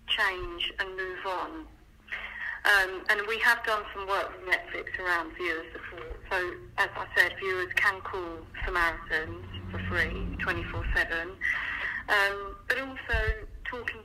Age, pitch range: 40-59, 190-220 Hz